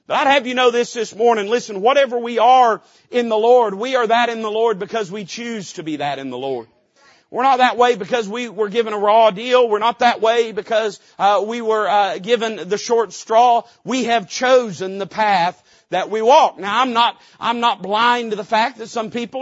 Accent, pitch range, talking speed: American, 215-260 Hz, 225 wpm